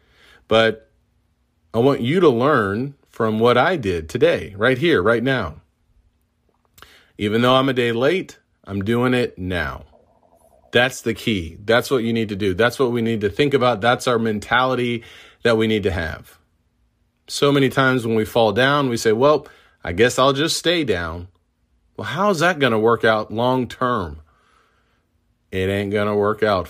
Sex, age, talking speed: male, 40-59, 180 wpm